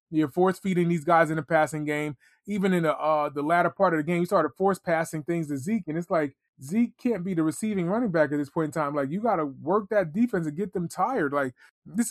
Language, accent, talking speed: English, American, 255 wpm